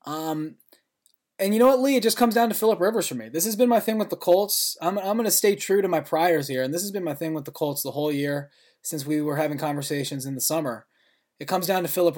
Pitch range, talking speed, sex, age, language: 135-160 Hz, 280 wpm, male, 20-39, English